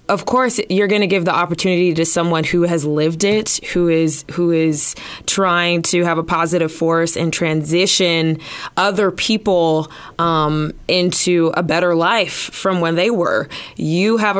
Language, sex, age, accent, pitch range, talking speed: English, female, 20-39, American, 165-185 Hz, 165 wpm